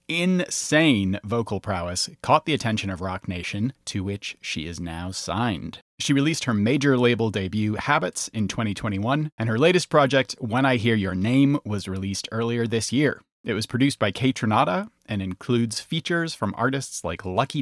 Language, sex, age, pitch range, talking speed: English, male, 30-49, 100-135 Hz, 170 wpm